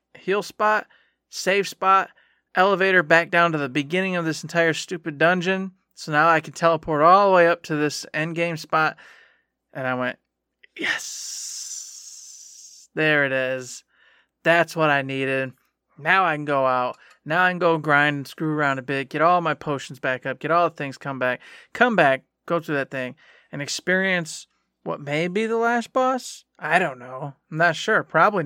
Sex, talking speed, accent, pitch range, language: male, 185 wpm, American, 140-175 Hz, English